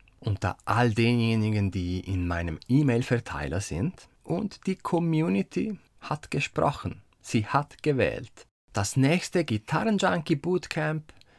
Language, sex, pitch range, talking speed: German, male, 100-150 Hz, 100 wpm